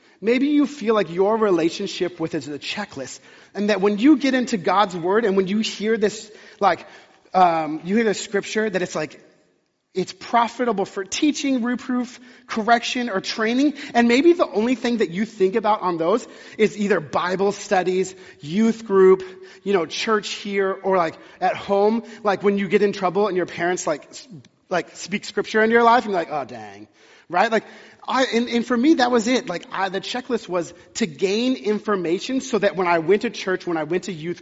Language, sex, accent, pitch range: English, male, American, 180-230 Hz